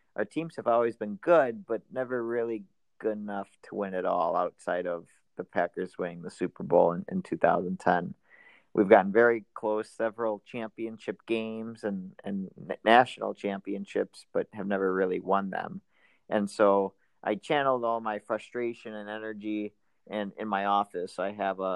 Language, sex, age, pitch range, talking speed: English, male, 40-59, 100-115 Hz, 155 wpm